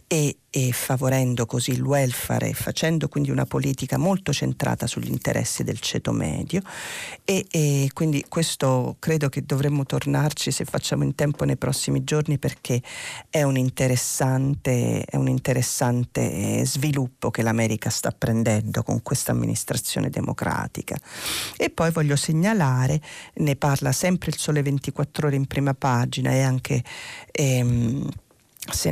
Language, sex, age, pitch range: Italian, female, 40-59, 125-150 Hz